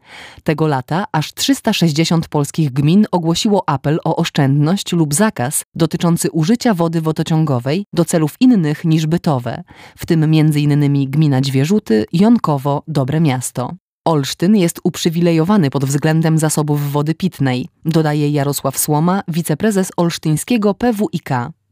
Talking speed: 120 wpm